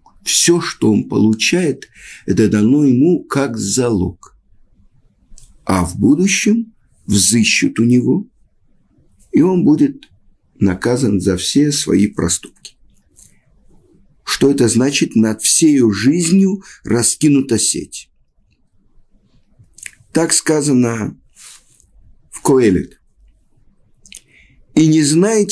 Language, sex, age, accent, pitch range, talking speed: Russian, male, 50-69, native, 105-175 Hz, 90 wpm